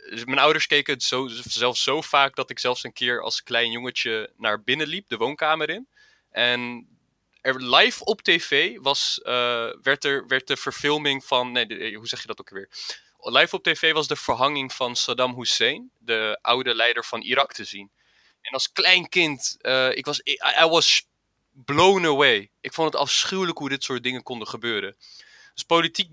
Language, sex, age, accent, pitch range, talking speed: Dutch, male, 20-39, Dutch, 120-155 Hz, 190 wpm